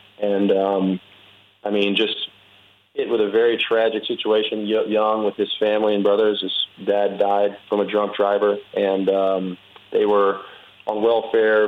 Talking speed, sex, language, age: 155 wpm, male, English, 40-59